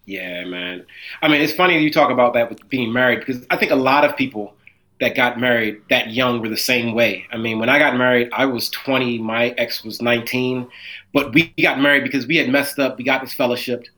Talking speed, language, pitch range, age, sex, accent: 235 wpm, English, 120-150 Hz, 30-49, male, American